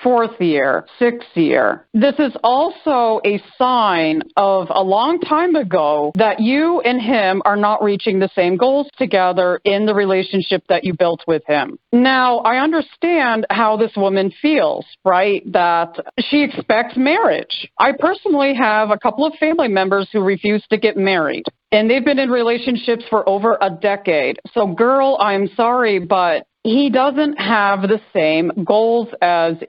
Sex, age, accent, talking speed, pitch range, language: female, 40-59, American, 160 wpm, 195-270 Hz, English